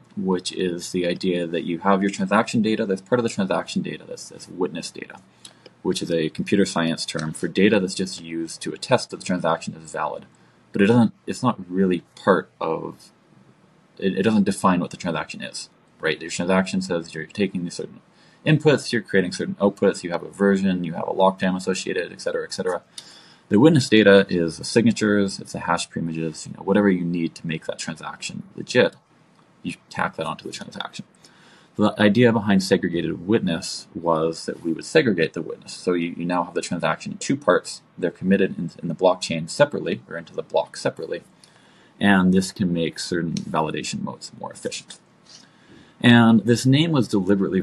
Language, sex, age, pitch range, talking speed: English, male, 20-39, 85-105 Hz, 195 wpm